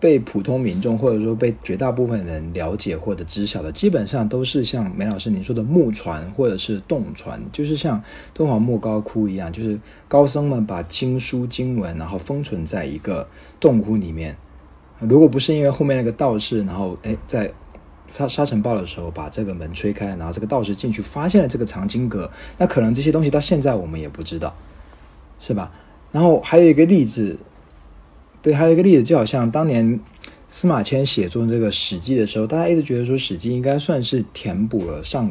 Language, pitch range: Chinese, 95-135 Hz